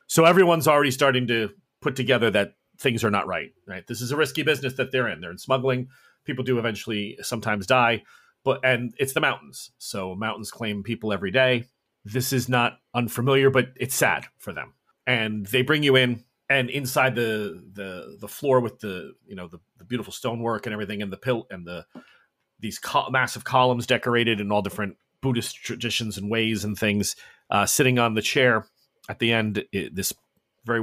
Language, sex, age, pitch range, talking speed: English, male, 30-49, 105-130 Hz, 195 wpm